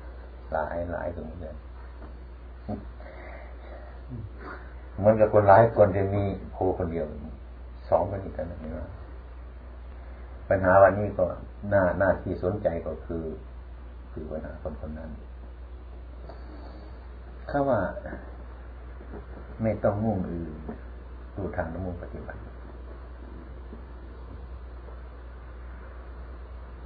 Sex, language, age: male, Thai, 60-79